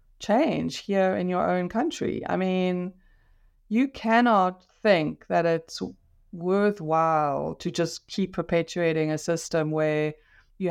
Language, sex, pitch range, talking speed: English, female, 150-185 Hz, 125 wpm